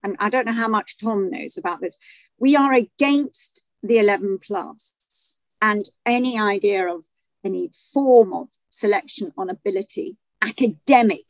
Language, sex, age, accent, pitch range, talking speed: English, female, 50-69, British, 210-310 Hz, 145 wpm